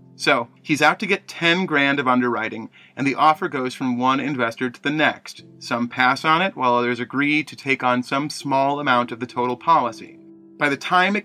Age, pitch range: 30-49, 125-170 Hz